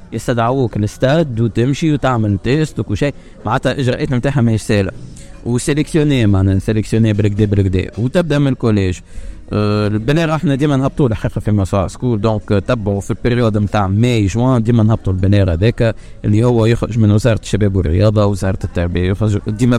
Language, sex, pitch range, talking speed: Arabic, male, 100-125 Hz, 150 wpm